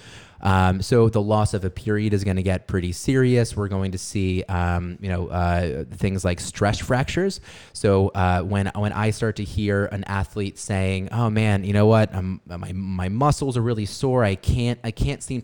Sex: male